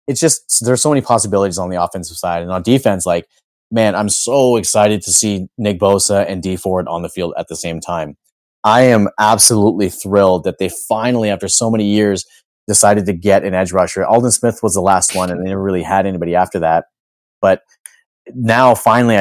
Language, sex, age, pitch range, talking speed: English, male, 30-49, 95-110 Hz, 205 wpm